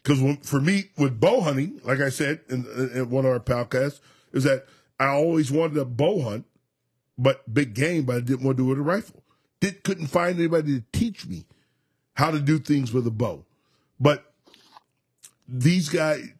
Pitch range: 125-155 Hz